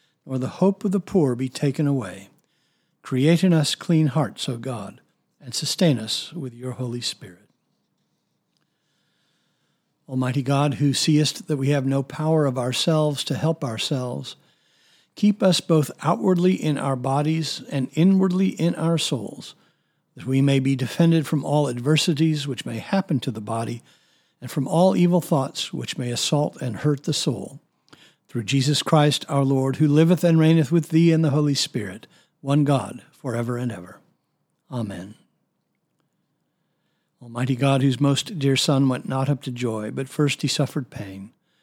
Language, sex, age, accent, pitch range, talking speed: English, male, 60-79, American, 130-160 Hz, 160 wpm